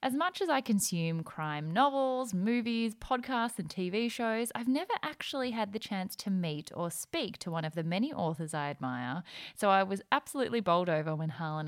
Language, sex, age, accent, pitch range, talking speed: English, female, 10-29, Australian, 160-235 Hz, 195 wpm